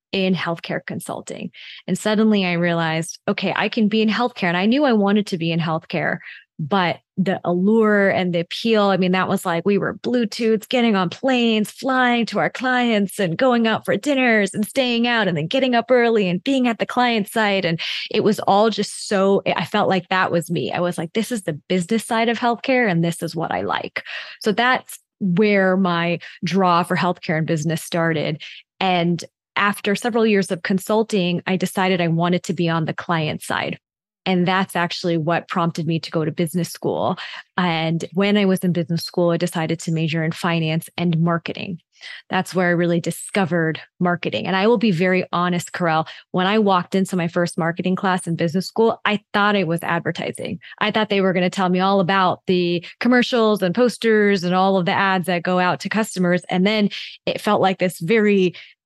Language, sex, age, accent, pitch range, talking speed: English, female, 20-39, American, 175-215 Hz, 205 wpm